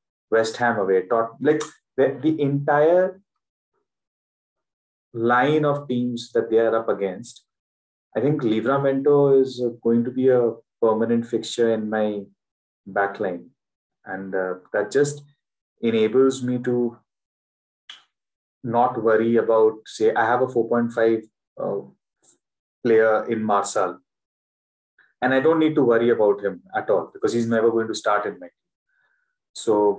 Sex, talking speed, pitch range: male, 130 wpm, 110-130 Hz